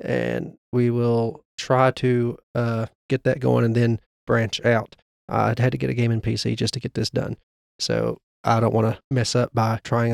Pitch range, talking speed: 115-140 Hz, 205 wpm